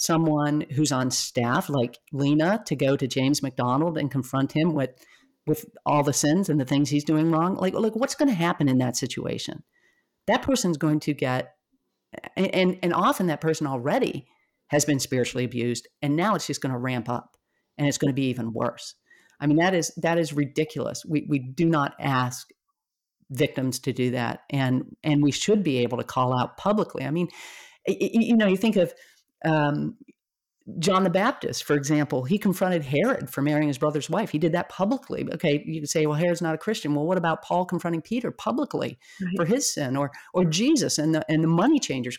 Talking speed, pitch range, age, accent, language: 210 wpm, 145-190 Hz, 50-69, American, English